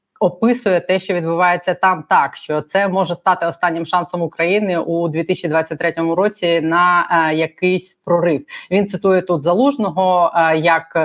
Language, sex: Ukrainian, female